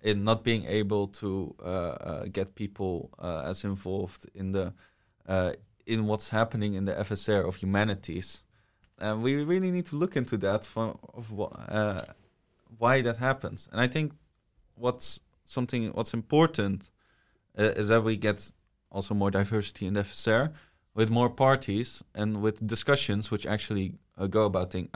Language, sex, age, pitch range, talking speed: English, male, 20-39, 100-120 Hz, 165 wpm